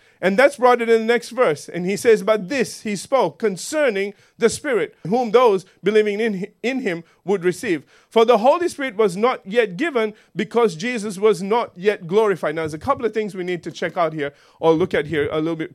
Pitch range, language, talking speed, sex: 190-250 Hz, English, 220 wpm, male